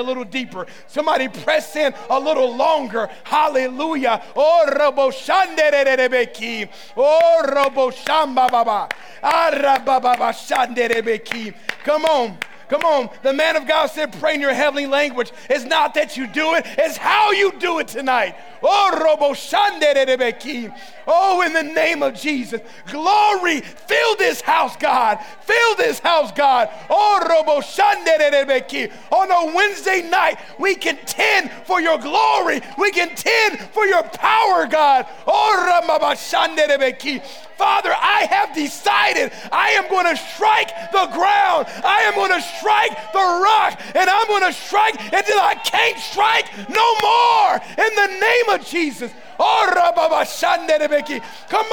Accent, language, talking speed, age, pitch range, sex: American, English, 115 wpm, 30-49, 285-405 Hz, male